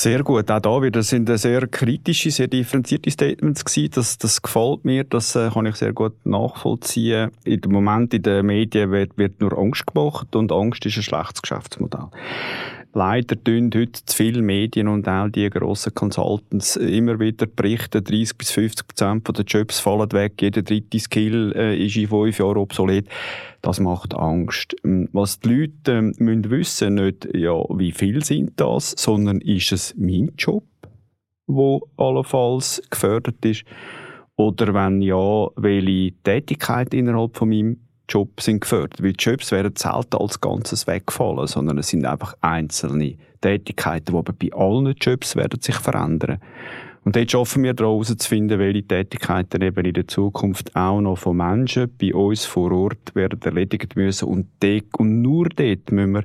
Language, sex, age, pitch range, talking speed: German, male, 30-49, 100-115 Hz, 160 wpm